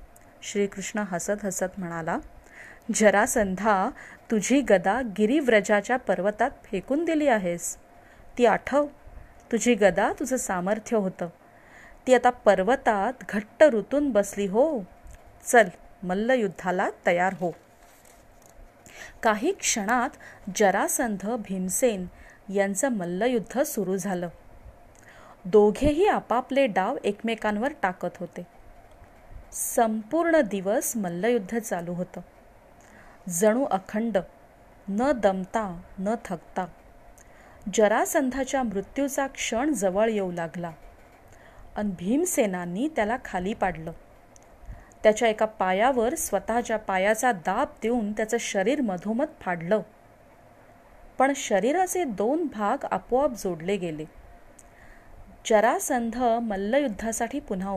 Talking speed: 90 wpm